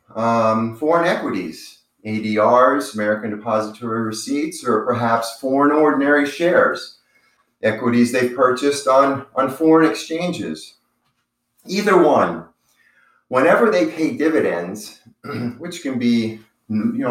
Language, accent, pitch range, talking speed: English, American, 105-130 Hz, 100 wpm